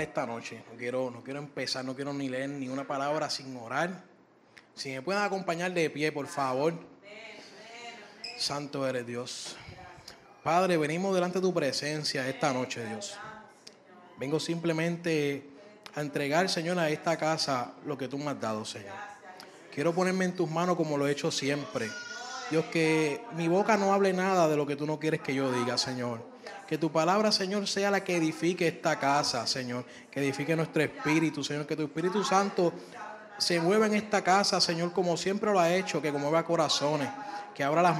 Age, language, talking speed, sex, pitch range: 20-39, Spanish, 180 wpm, male, 145-190 Hz